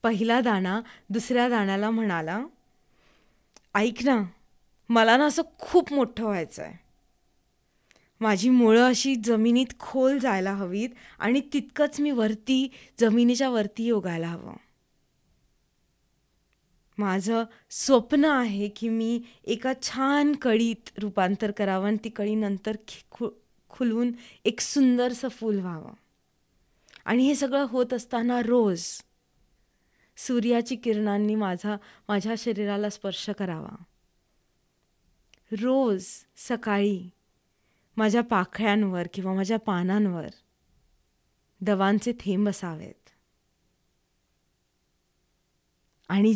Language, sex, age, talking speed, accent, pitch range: Marathi, female, 20-39, 90 wpm, native, 195-240 Hz